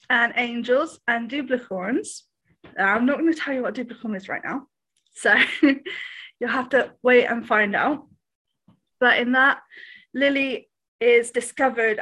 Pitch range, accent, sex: 220-290 Hz, British, female